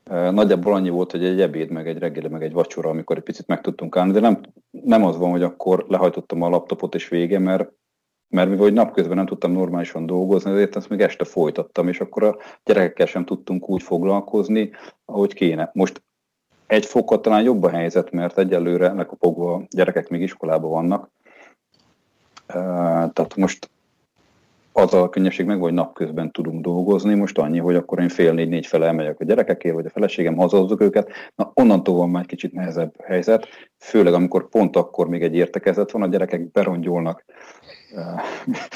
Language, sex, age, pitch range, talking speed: Hungarian, male, 40-59, 85-95 Hz, 170 wpm